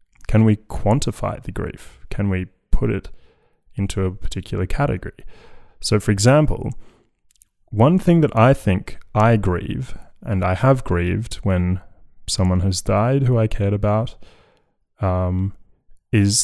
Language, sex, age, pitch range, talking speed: English, male, 20-39, 95-110 Hz, 135 wpm